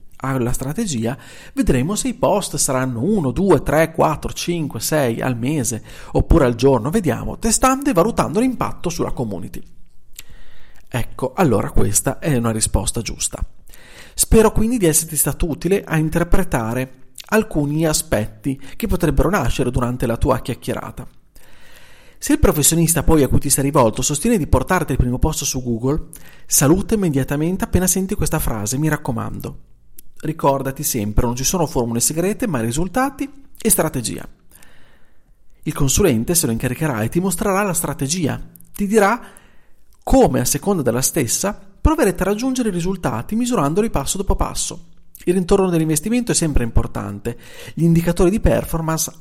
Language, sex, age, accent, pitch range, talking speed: Italian, male, 40-59, native, 125-185 Hz, 150 wpm